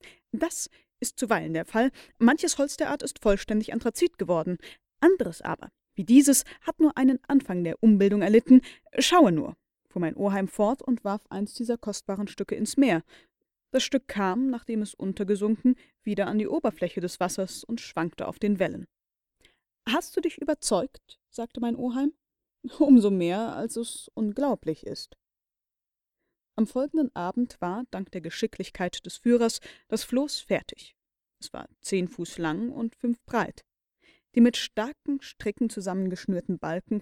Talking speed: 150 wpm